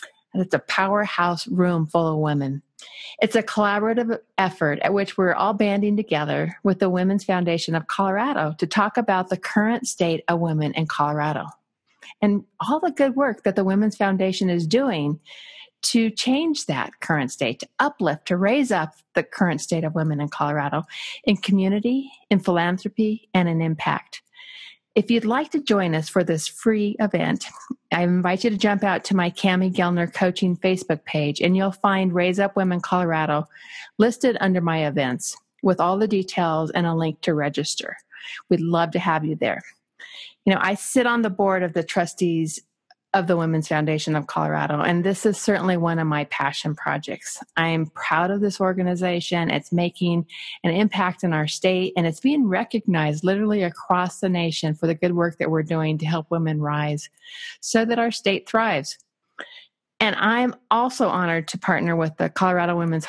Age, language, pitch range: 50-69, English, 165-210 Hz